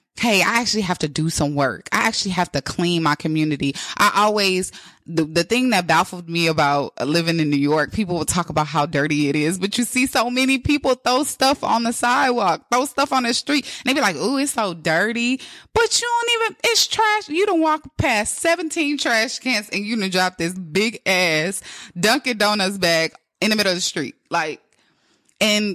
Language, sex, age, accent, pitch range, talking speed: English, female, 20-39, American, 170-230 Hz, 210 wpm